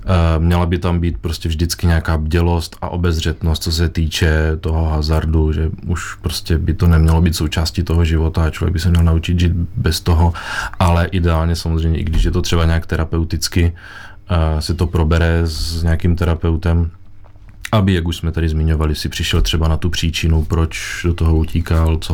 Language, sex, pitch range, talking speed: Czech, male, 85-95 Hz, 180 wpm